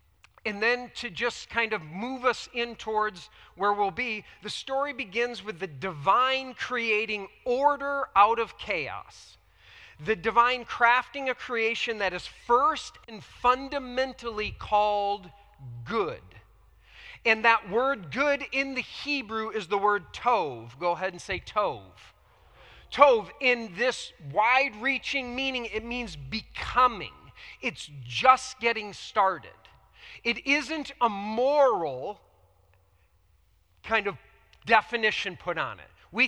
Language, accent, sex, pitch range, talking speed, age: English, American, male, 190-245 Hz, 125 wpm, 40-59